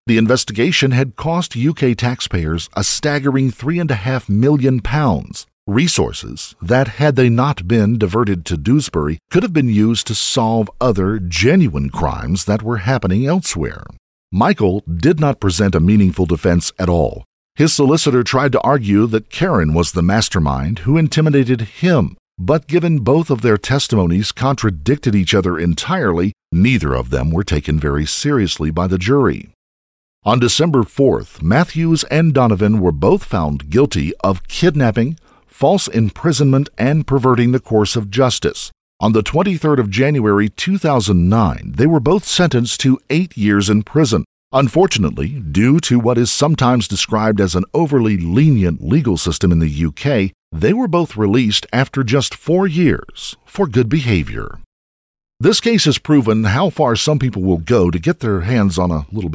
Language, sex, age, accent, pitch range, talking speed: English, male, 50-69, American, 95-140 Hz, 160 wpm